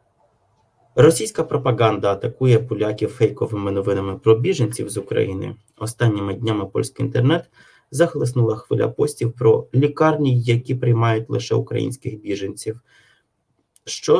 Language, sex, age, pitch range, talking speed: Polish, male, 20-39, 110-130 Hz, 105 wpm